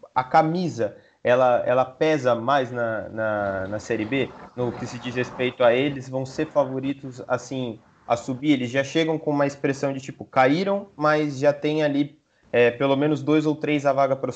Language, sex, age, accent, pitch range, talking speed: Portuguese, male, 20-39, Brazilian, 125-150 Hz, 190 wpm